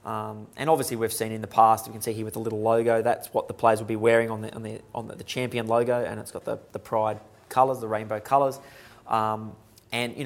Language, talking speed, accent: English, 255 wpm, Australian